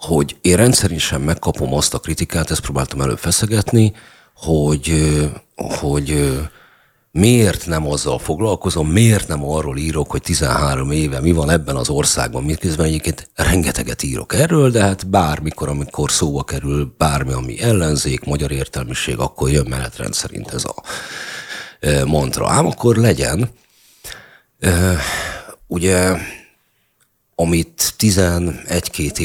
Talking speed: 120 wpm